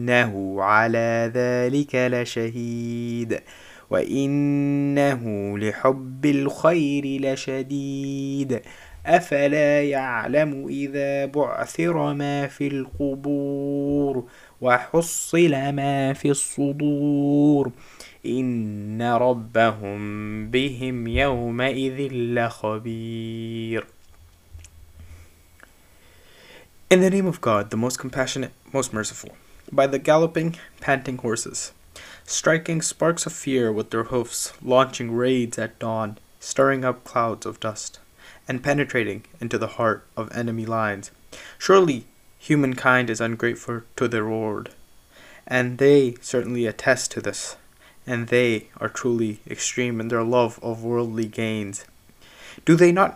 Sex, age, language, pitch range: male, 20-39, English, 110-140 Hz